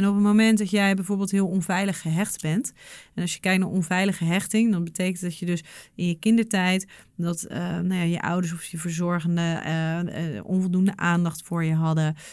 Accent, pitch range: Dutch, 175-200 Hz